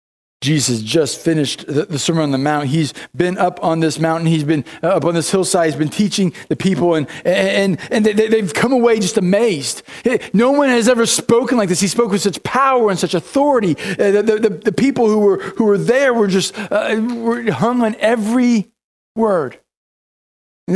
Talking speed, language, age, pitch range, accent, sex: 210 wpm, English, 40-59, 150-210 Hz, American, male